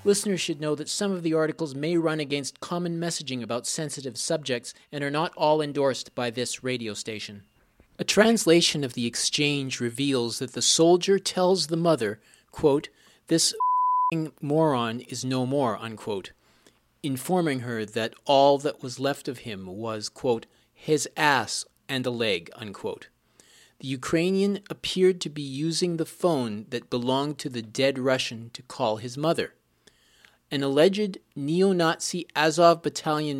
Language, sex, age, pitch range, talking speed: English, male, 40-59, 120-160 Hz, 150 wpm